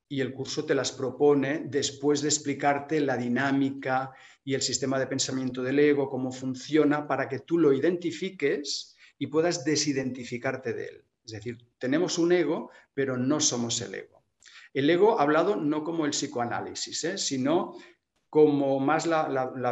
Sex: male